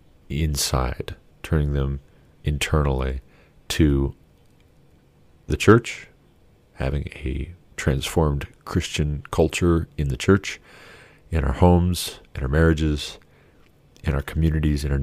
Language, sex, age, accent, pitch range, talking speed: English, male, 40-59, American, 70-85 Hz, 105 wpm